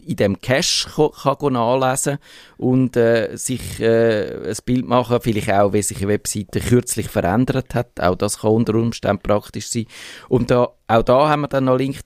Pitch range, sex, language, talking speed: 110-130 Hz, male, German, 190 wpm